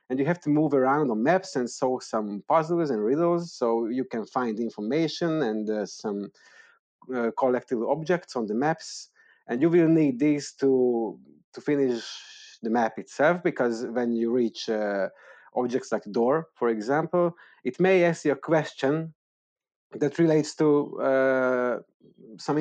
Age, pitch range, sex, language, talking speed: 30-49, 120-160 Hz, male, English, 160 wpm